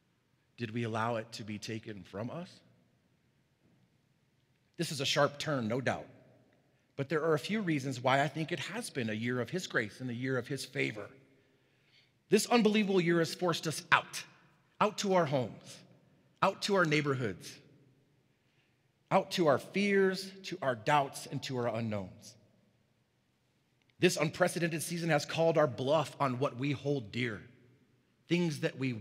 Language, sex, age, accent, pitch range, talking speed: English, male, 40-59, American, 115-165 Hz, 165 wpm